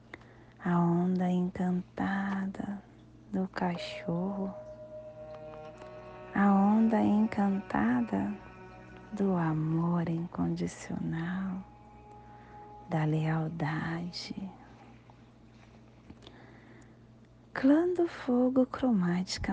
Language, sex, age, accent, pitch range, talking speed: English, female, 30-49, Brazilian, 120-185 Hz, 50 wpm